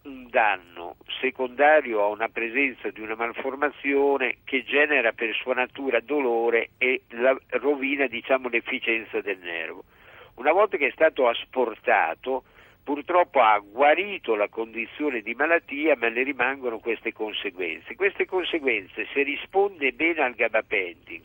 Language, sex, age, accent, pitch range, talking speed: Italian, male, 60-79, native, 125-160 Hz, 135 wpm